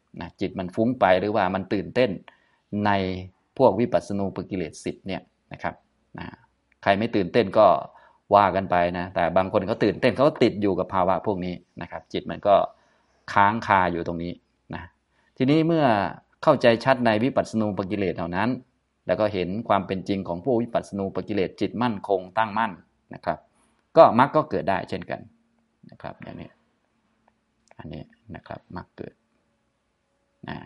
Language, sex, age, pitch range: Thai, male, 20-39, 95-115 Hz